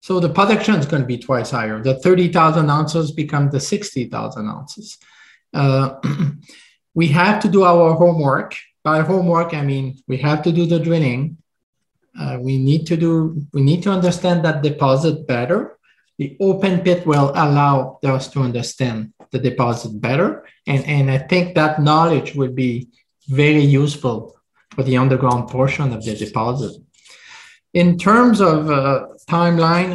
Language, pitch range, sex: English, 140-175 Hz, male